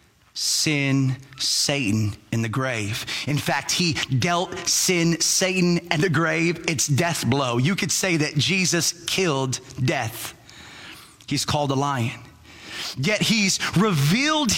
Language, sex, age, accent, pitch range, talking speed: English, male, 30-49, American, 120-175 Hz, 130 wpm